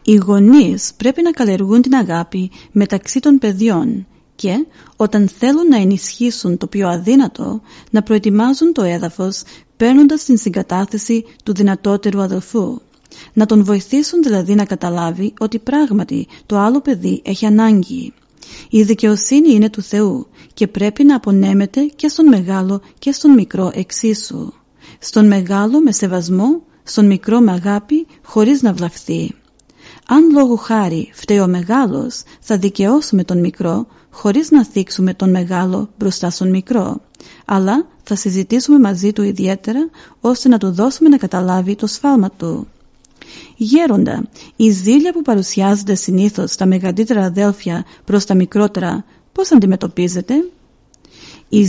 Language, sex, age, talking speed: Greek, female, 40-59, 135 wpm